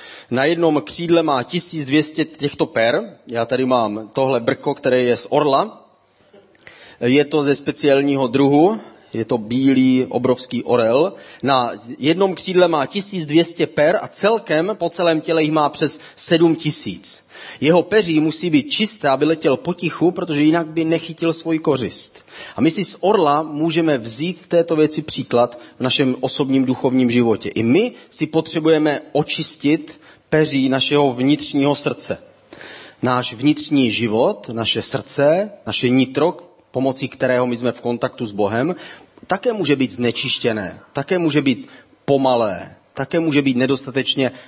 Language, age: Czech, 30-49